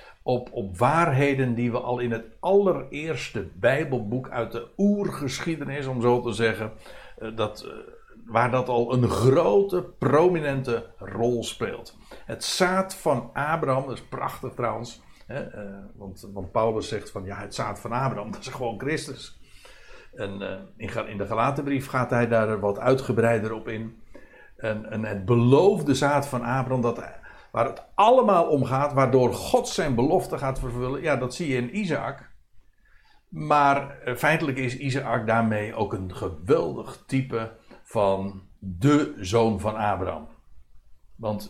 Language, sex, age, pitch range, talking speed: Dutch, male, 60-79, 110-140 Hz, 145 wpm